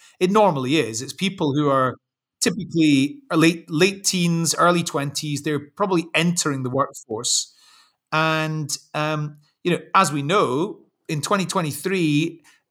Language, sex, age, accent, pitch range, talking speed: English, male, 30-49, British, 140-185 Hz, 125 wpm